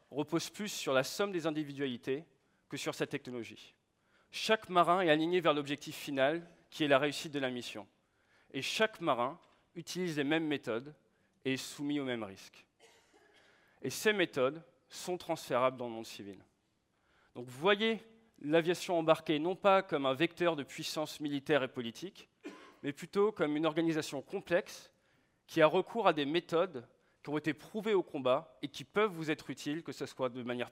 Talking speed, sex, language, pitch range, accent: 180 wpm, male, French, 135-175 Hz, French